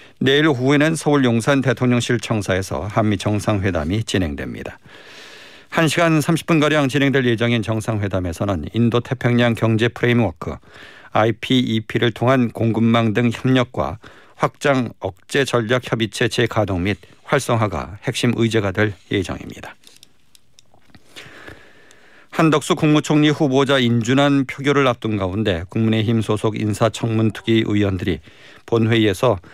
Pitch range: 105-130 Hz